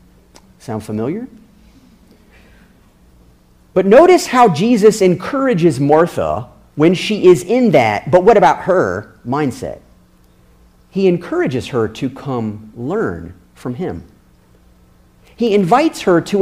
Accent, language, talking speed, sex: American, English, 110 wpm, male